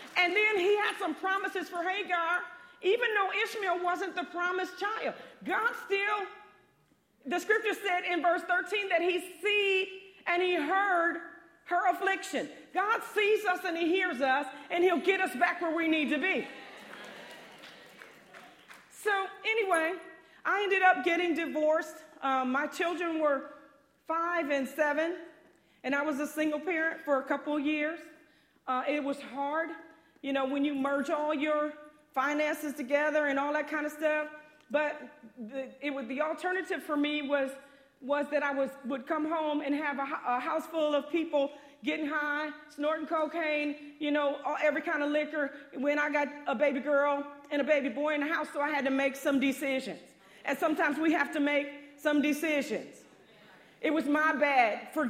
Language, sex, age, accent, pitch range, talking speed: English, female, 40-59, American, 285-350 Hz, 175 wpm